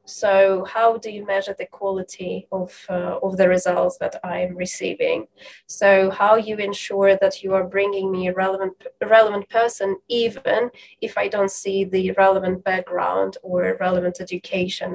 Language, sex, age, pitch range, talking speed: English, female, 20-39, 185-210 Hz, 160 wpm